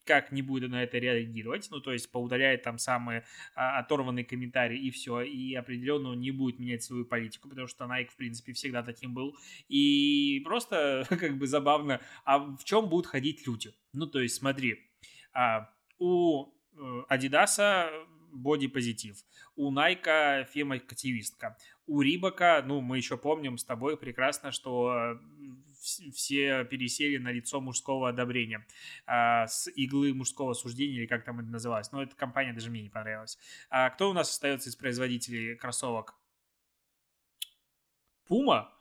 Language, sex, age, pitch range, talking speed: Russian, male, 20-39, 125-155 Hz, 145 wpm